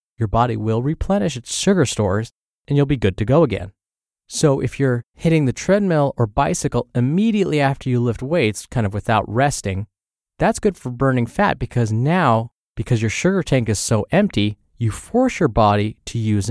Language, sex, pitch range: English, male, 110-155 Hz